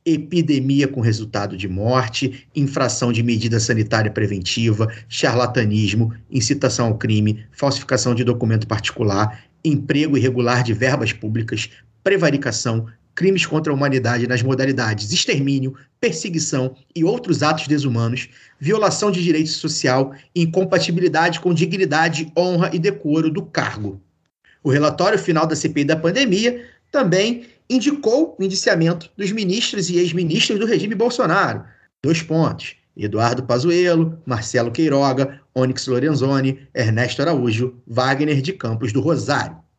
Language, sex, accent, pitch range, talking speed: Portuguese, male, Brazilian, 120-175 Hz, 120 wpm